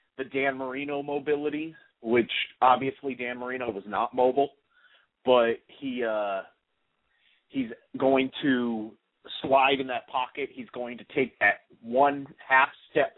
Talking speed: 130 wpm